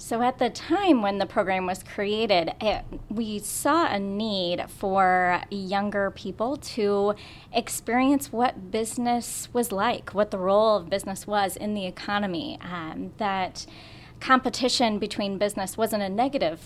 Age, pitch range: 30-49, 185-225 Hz